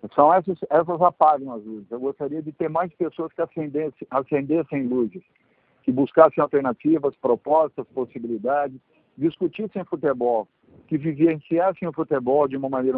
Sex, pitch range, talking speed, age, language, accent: male, 130-165 Hz, 140 wpm, 50-69, Portuguese, Brazilian